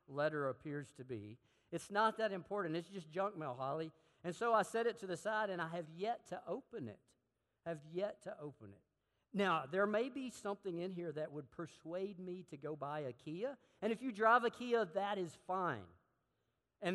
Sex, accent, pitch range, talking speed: male, American, 125-190 Hz, 210 wpm